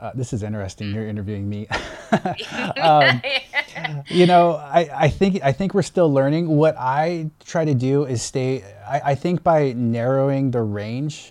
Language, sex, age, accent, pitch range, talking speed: English, male, 20-39, American, 105-130 Hz, 170 wpm